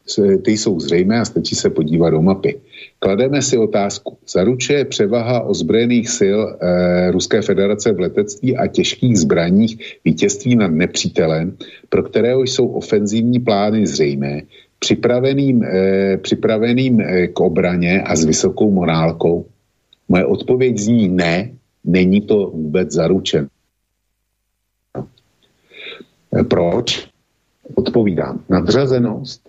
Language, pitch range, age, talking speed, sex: Slovak, 95-120 Hz, 50-69, 110 wpm, male